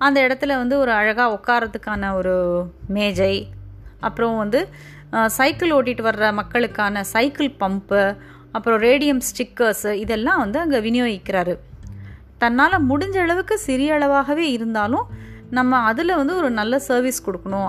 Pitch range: 200-270 Hz